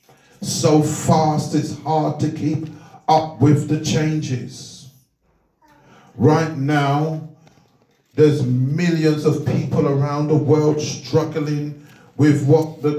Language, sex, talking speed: English, male, 105 wpm